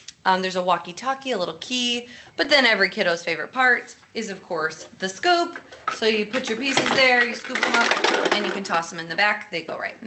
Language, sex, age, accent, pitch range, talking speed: English, female, 20-39, American, 180-235 Hz, 240 wpm